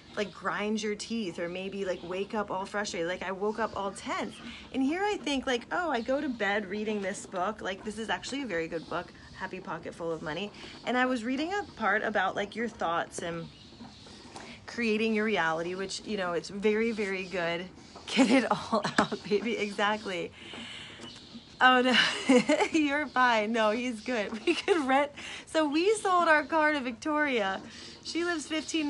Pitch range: 205-280 Hz